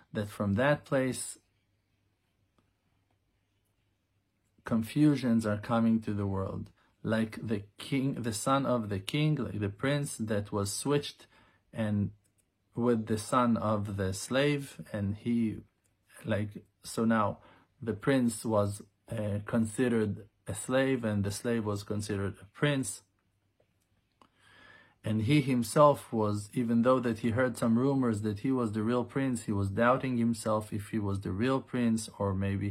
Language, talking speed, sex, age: English, 145 wpm, male, 40-59